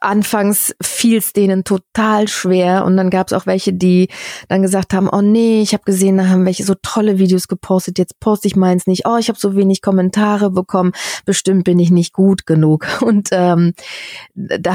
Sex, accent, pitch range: female, German, 175-200 Hz